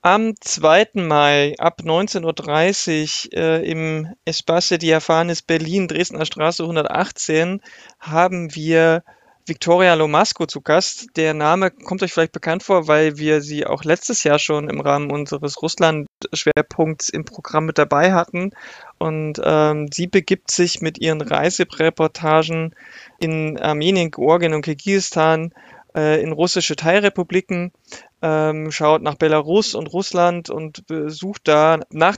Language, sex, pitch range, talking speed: German, male, 155-175 Hz, 125 wpm